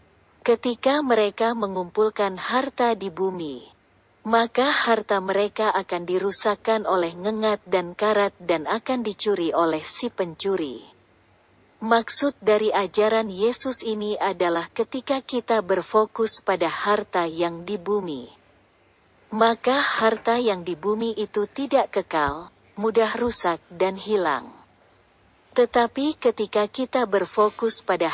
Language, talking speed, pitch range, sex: Indonesian, 110 wpm, 185-230 Hz, female